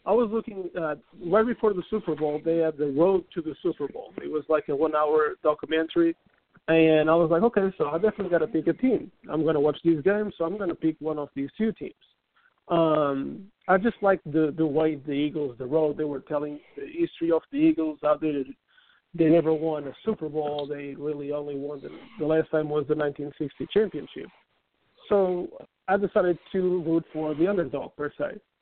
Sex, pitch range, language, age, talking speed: male, 150-185 Hz, English, 50-69, 210 wpm